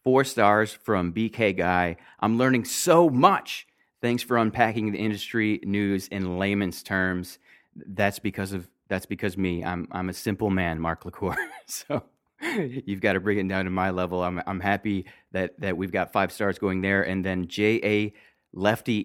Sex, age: male, 30-49